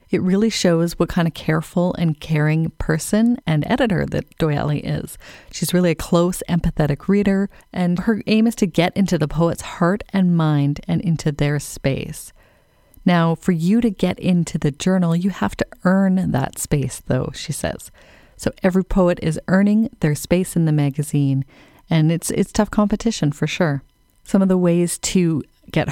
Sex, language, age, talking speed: female, English, 30-49, 180 wpm